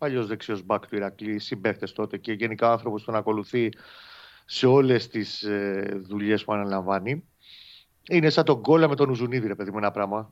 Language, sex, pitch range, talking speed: Greek, male, 105-145 Hz, 175 wpm